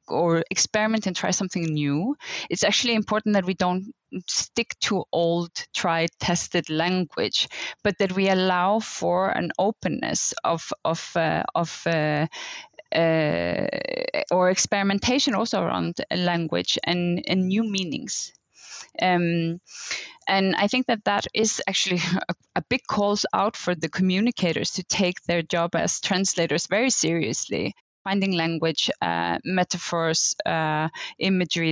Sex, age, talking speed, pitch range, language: female, 20-39, 130 wpm, 170-210 Hz, English